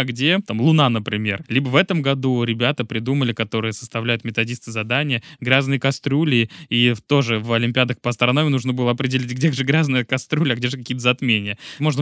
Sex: male